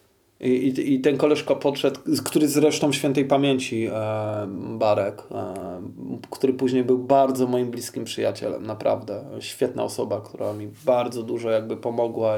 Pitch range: 110-135 Hz